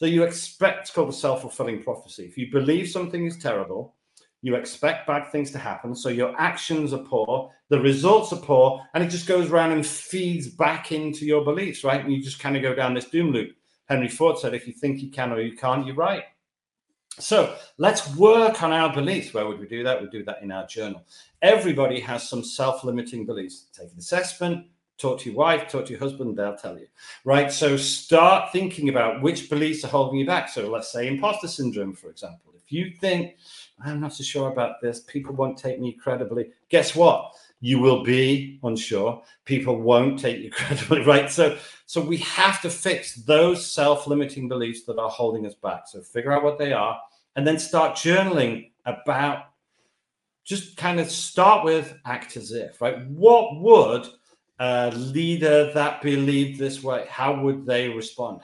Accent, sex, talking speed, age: British, male, 195 wpm, 50-69